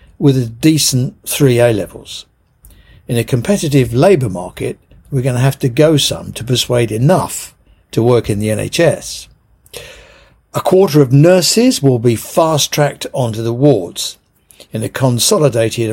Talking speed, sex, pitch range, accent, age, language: 145 wpm, male, 115-145 Hz, British, 50-69, English